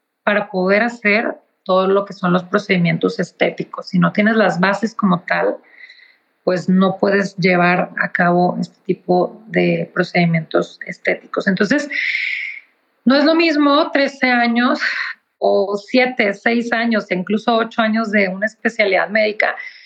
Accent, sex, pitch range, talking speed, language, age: Mexican, female, 185-230 Hz, 140 wpm, English, 30-49